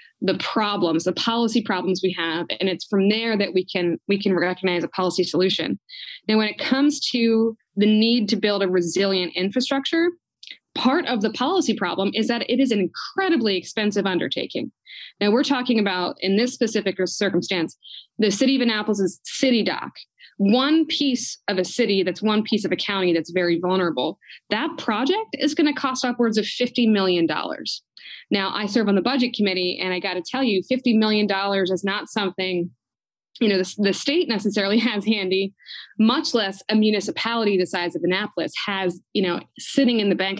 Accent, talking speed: American, 185 wpm